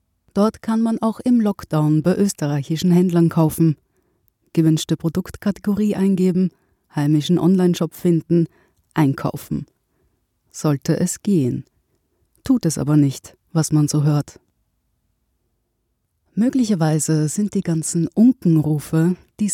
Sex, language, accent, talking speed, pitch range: female, German, German, 105 wpm, 155-190 Hz